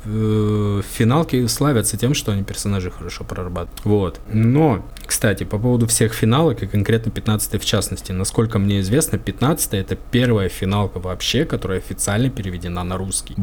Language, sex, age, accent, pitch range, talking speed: Russian, male, 20-39, native, 100-135 Hz, 150 wpm